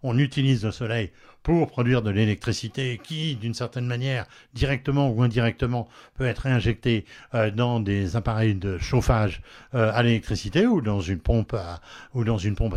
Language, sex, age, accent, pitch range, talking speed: French, male, 60-79, French, 110-140 Hz, 160 wpm